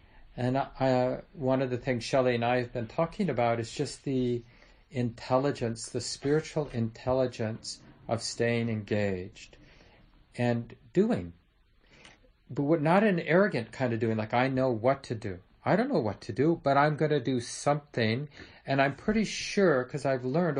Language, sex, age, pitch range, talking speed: English, male, 50-69, 115-140 Hz, 165 wpm